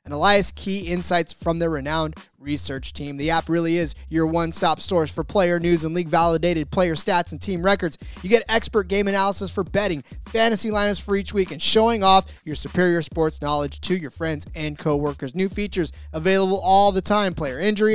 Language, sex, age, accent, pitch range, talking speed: English, male, 20-39, American, 155-200 Hz, 195 wpm